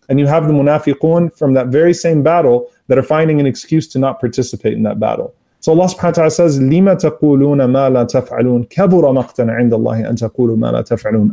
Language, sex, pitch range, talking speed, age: English, male, 120-150 Hz, 180 wpm, 30-49